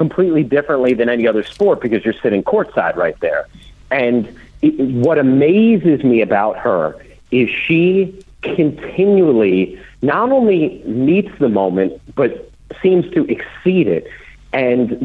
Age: 50-69